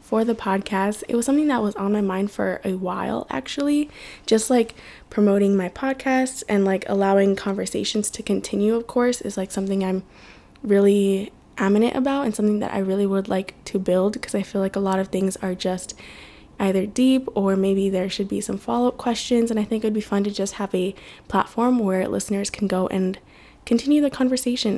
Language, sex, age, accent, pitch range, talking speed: English, female, 10-29, American, 200-240 Hz, 200 wpm